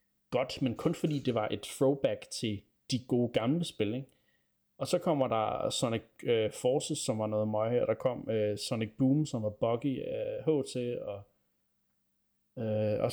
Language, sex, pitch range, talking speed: Danish, male, 110-140 Hz, 180 wpm